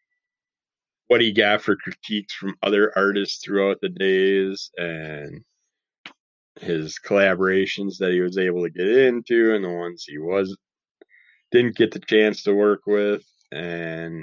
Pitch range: 85-100 Hz